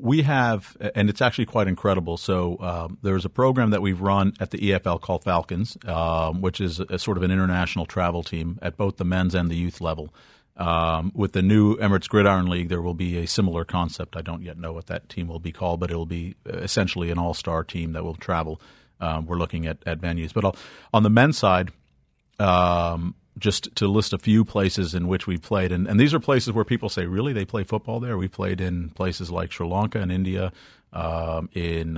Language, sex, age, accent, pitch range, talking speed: English, male, 50-69, American, 85-100 Hz, 230 wpm